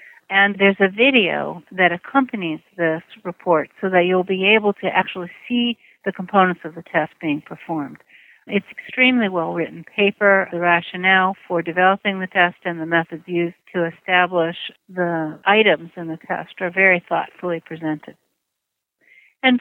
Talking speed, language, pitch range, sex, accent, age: 150 wpm, English, 170-210 Hz, female, American, 60-79